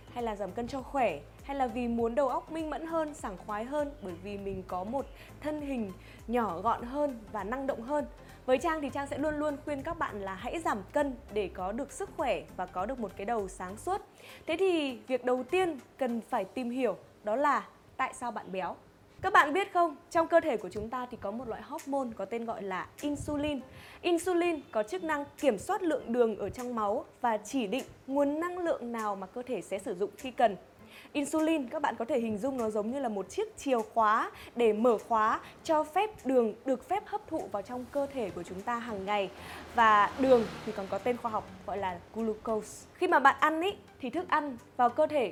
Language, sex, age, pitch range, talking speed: Vietnamese, female, 20-39, 220-300 Hz, 235 wpm